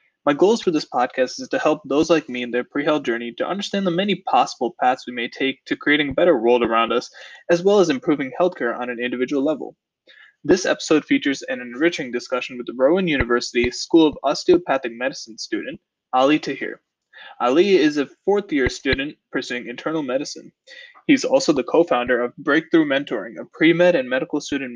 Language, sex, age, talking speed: English, male, 20-39, 185 wpm